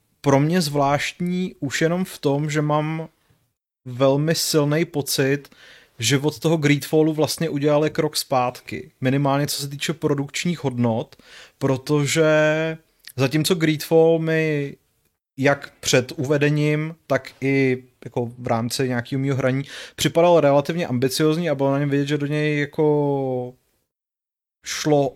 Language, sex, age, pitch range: Czech, male, 30-49, 130-155 Hz